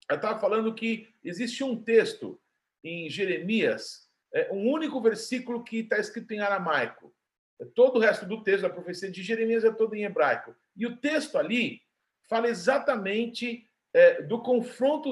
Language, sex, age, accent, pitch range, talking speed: Portuguese, male, 50-69, Brazilian, 195-255 Hz, 150 wpm